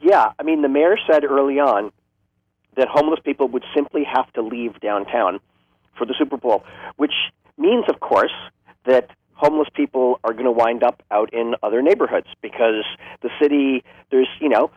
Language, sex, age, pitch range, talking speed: English, male, 40-59, 115-145 Hz, 175 wpm